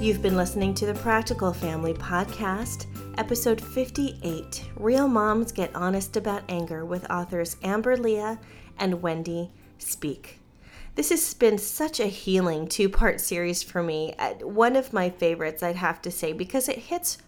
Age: 30-49